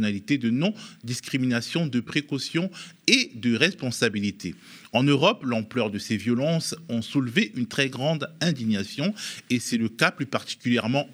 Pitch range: 110-145 Hz